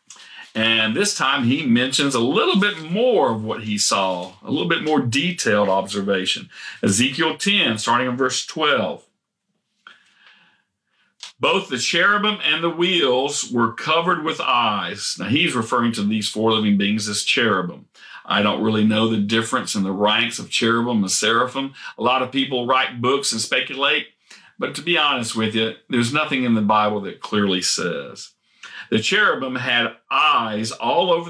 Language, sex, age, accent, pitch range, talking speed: English, male, 50-69, American, 110-150 Hz, 165 wpm